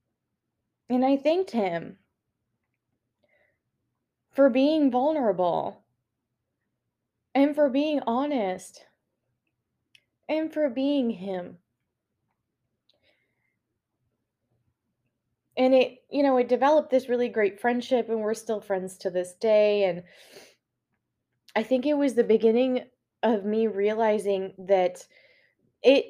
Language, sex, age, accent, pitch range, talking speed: English, female, 20-39, American, 185-245 Hz, 100 wpm